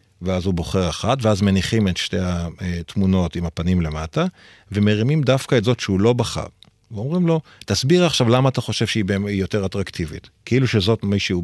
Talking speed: 175 wpm